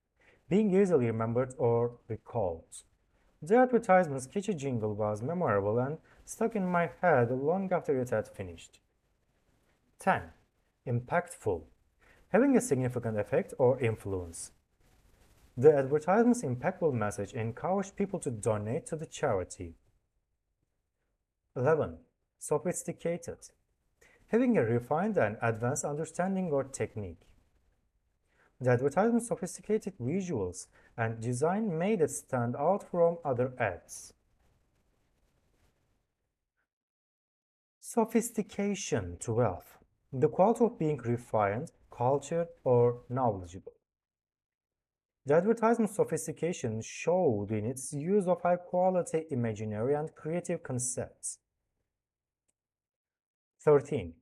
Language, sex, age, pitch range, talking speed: English, male, 40-59, 110-180 Hz, 95 wpm